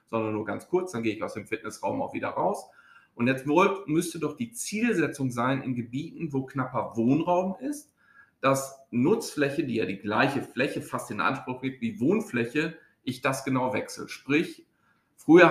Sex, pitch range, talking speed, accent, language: male, 125-165 Hz, 180 wpm, German, German